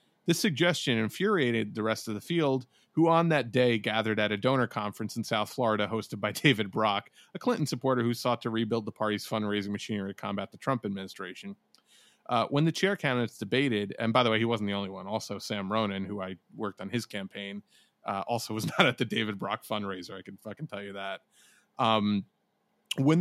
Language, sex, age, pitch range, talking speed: English, male, 30-49, 105-135 Hz, 210 wpm